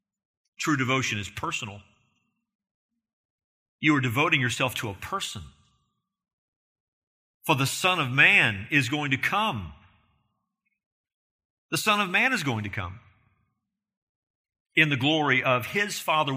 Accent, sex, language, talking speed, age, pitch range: American, male, English, 125 wpm, 50-69, 115-160 Hz